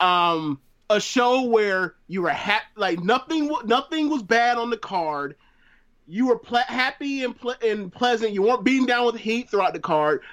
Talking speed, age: 185 wpm, 30-49